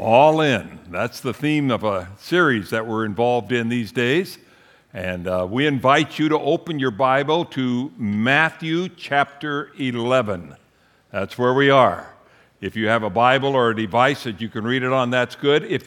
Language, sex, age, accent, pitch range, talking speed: English, male, 60-79, American, 115-145 Hz, 180 wpm